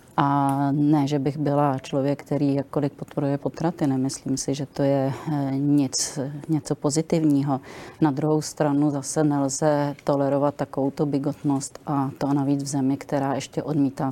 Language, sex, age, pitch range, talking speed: Czech, female, 30-49, 140-155 Hz, 145 wpm